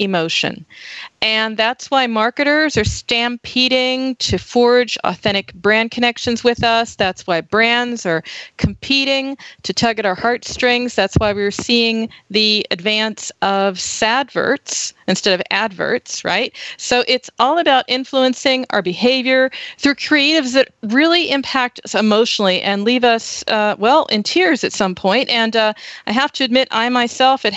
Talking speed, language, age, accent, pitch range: 150 wpm, English, 40-59, American, 205-255 Hz